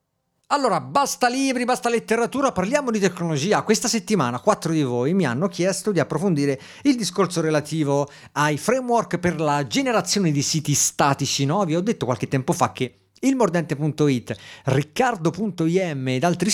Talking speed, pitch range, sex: 150 wpm, 130-195 Hz, male